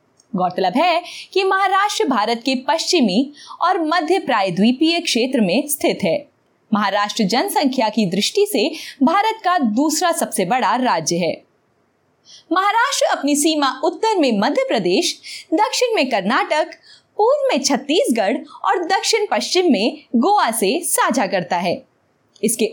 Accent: native